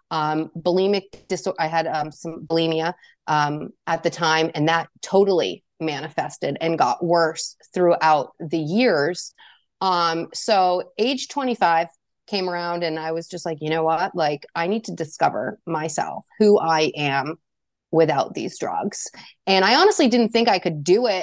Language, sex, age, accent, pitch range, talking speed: English, female, 30-49, American, 165-190 Hz, 160 wpm